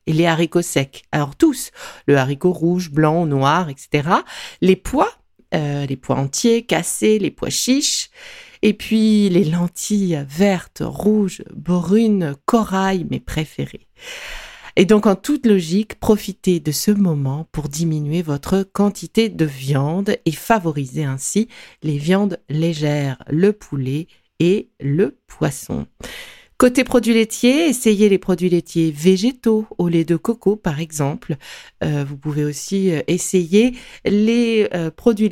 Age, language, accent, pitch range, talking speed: 50-69, French, French, 155-215 Hz, 135 wpm